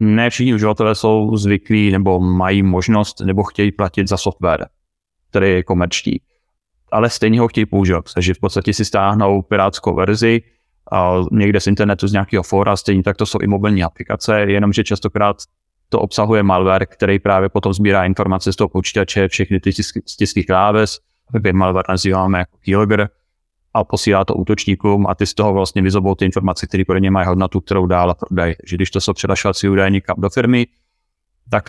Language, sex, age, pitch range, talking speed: Czech, male, 30-49, 95-105 Hz, 180 wpm